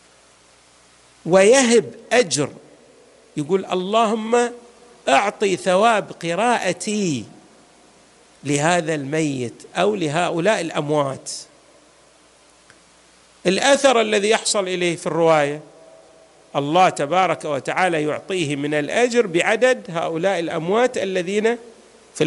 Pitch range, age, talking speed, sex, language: 150-215 Hz, 50-69, 80 wpm, male, Arabic